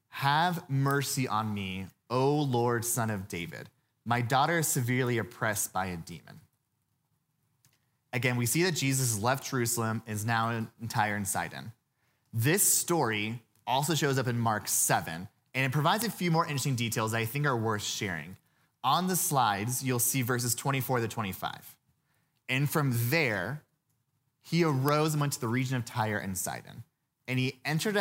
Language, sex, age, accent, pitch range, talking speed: English, male, 30-49, American, 115-145 Hz, 165 wpm